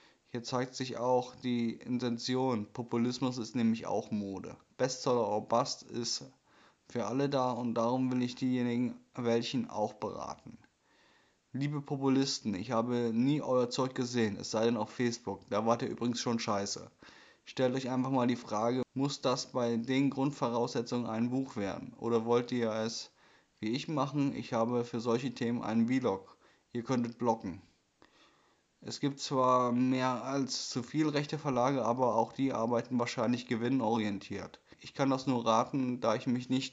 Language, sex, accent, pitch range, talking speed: German, male, German, 115-130 Hz, 165 wpm